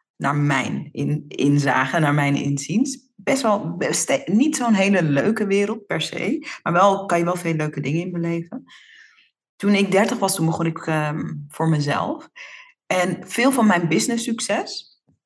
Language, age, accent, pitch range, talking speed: Dutch, 40-59, Dutch, 150-195 Hz, 170 wpm